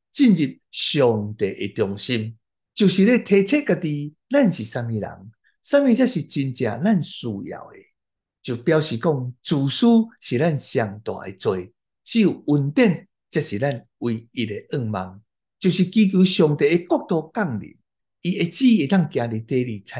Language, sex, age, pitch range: Chinese, male, 60-79, 120-185 Hz